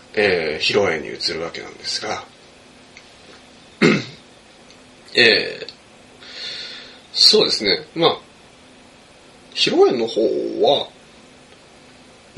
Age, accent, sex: 20-39, native, male